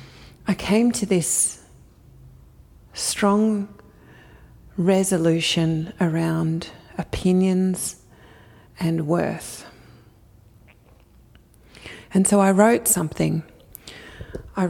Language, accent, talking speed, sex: English, Australian, 65 wpm, female